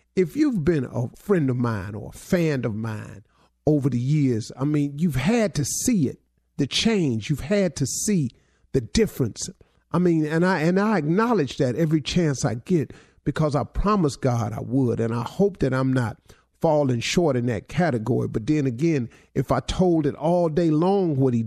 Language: English